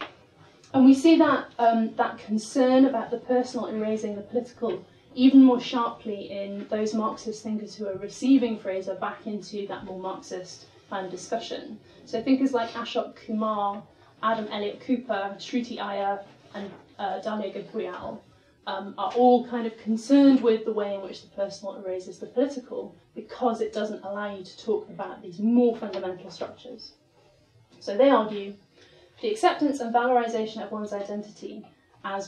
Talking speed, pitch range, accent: 160 wpm, 200-245 Hz, British